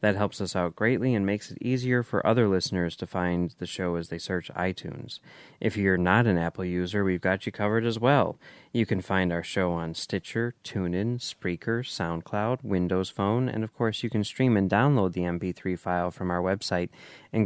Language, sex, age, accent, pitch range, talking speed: English, male, 30-49, American, 90-115 Hz, 205 wpm